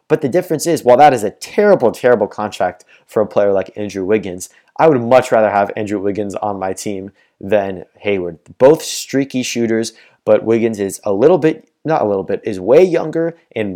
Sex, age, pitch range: male, 20-39, 100-135 Hz